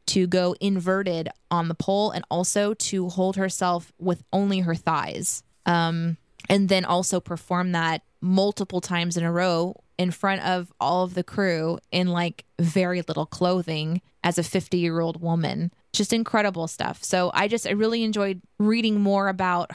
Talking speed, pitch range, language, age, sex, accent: 170 wpm, 165-190 Hz, English, 20-39, female, American